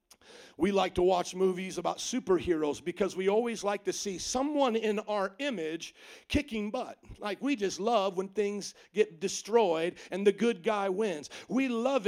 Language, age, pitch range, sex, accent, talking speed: English, 50-69, 205-290 Hz, male, American, 170 wpm